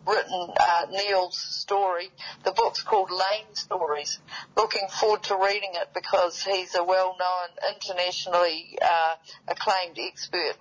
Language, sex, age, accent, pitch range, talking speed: English, female, 50-69, Australian, 175-205 Hz, 125 wpm